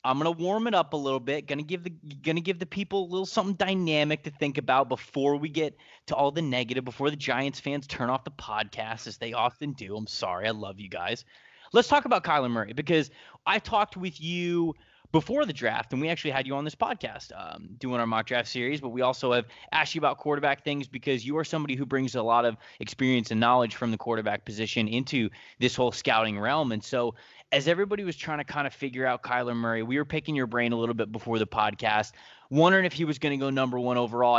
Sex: male